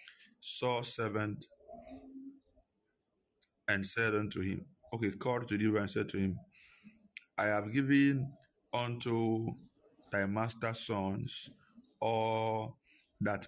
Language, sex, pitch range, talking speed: English, male, 100-120 Hz, 100 wpm